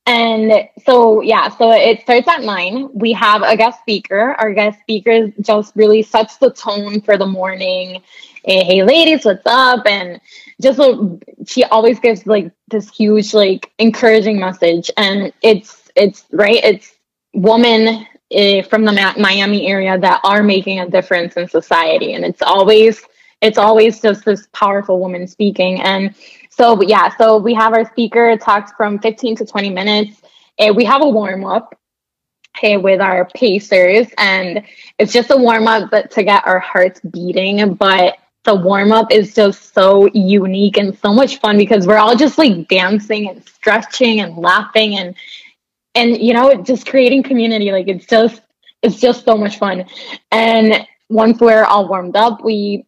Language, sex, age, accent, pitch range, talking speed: English, female, 10-29, American, 195-225 Hz, 170 wpm